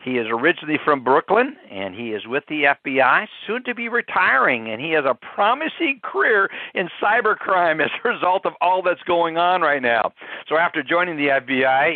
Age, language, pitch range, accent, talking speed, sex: 60-79, English, 150-195 Hz, American, 190 wpm, male